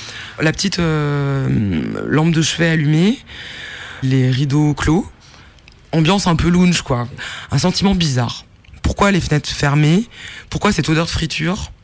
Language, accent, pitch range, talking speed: French, French, 120-160 Hz, 135 wpm